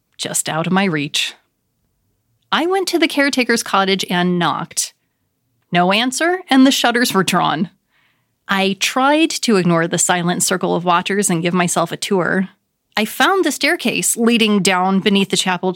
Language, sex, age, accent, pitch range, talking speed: English, female, 30-49, American, 180-230 Hz, 165 wpm